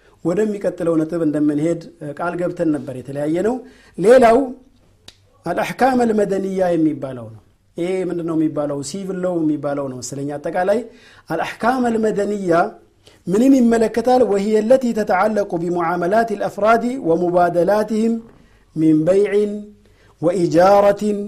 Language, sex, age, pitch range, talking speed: Amharic, male, 50-69, 165-230 Hz, 100 wpm